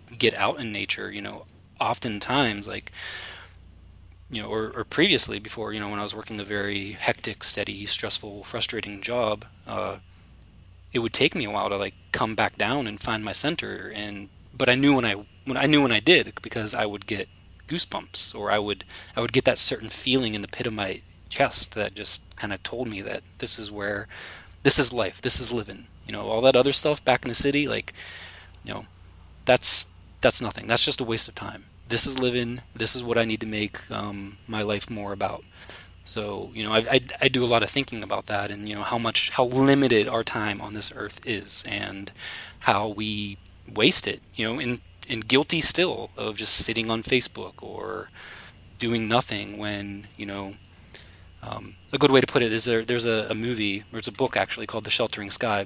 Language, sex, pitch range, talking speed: English, male, 100-120 Hz, 215 wpm